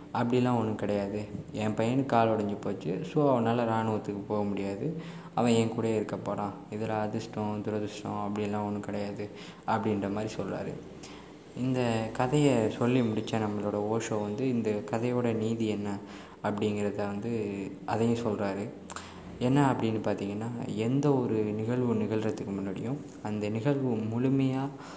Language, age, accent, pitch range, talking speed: Tamil, 20-39, native, 105-120 Hz, 125 wpm